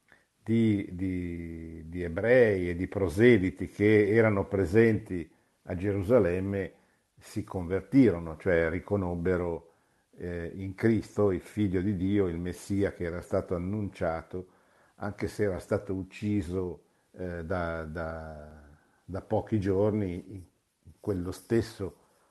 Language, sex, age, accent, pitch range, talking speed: Italian, male, 50-69, native, 90-110 Hz, 115 wpm